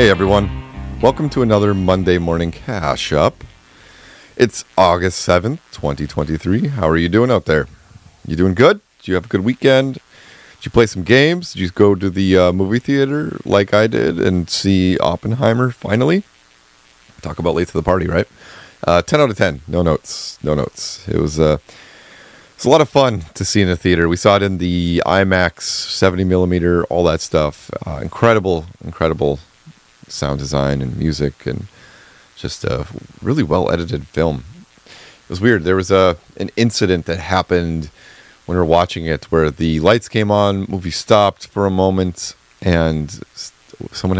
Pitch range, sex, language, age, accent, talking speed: 80-100 Hz, male, English, 30-49, American, 175 wpm